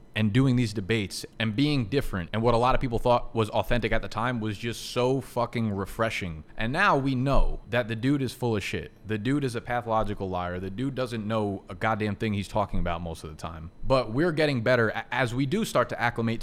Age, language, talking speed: 20-39, English, 240 wpm